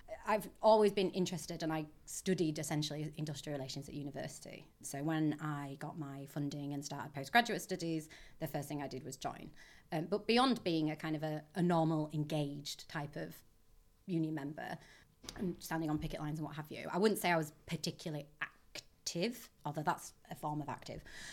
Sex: female